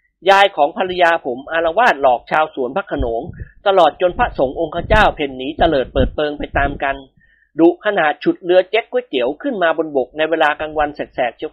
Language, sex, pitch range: Thai, male, 155-235 Hz